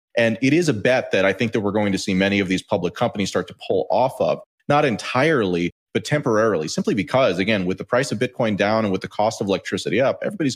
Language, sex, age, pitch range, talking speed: English, male, 30-49, 95-120 Hz, 250 wpm